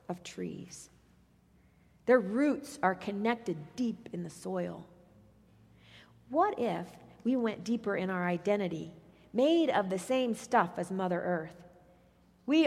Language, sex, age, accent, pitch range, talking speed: English, female, 40-59, American, 190-240 Hz, 125 wpm